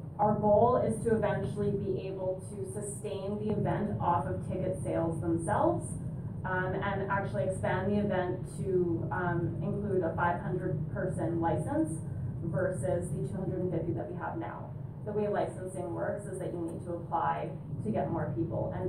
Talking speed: 160 wpm